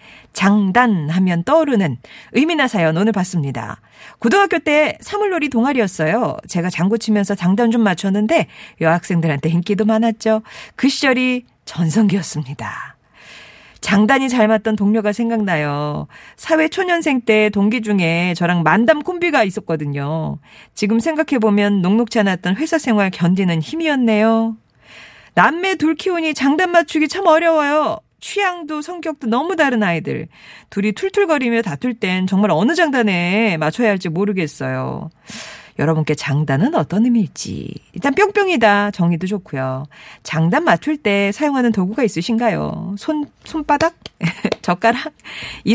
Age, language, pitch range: 40-59, Korean, 180-275 Hz